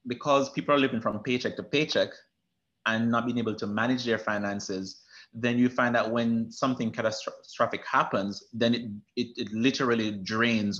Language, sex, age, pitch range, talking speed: English, male, 30-49, 115-135 Hz, 165 wpm